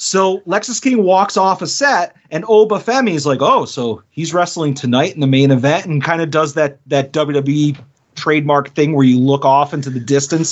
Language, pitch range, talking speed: English, 140-190 Hz, 210 wpm